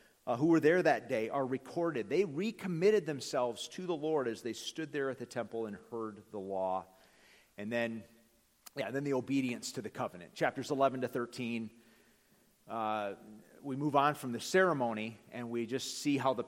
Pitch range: 115-155 Hz